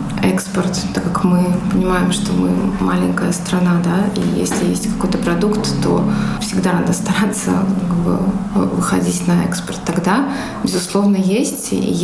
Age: 20-39